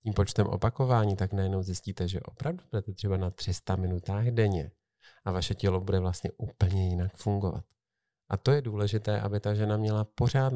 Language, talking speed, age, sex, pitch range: Czech, 175 wpm, 40-59, male, 100-120 Hz